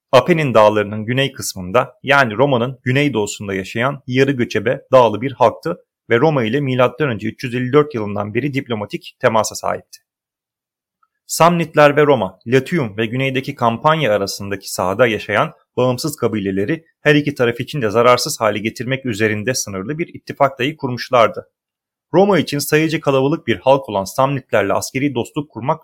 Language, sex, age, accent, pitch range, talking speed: Turkish, male, 30-49, native, 110-145 Hz, 140 wpm